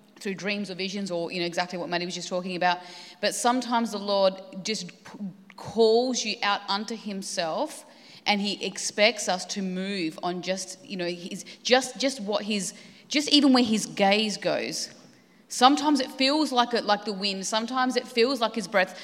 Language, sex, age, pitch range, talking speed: English, female, 30-49, 195-240 Hz, 190 wpm